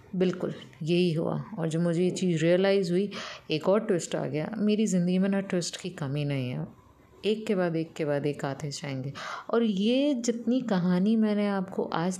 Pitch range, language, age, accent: 155-190 Hz, English, 20-39, Indian